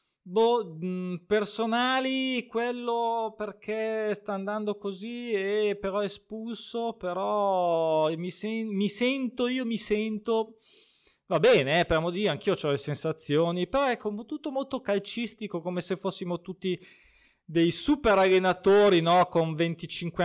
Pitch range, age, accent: 150-215 Hz, 20-39, native